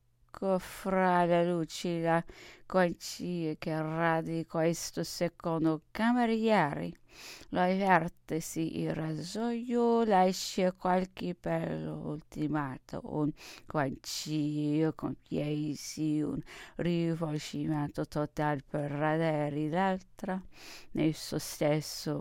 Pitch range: 150-205 Hz